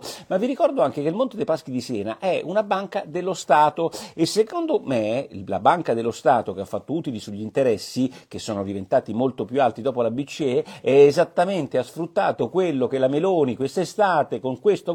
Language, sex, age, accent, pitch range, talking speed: Italian, male, 50-69, native, 115-165 Hz, 195 wpm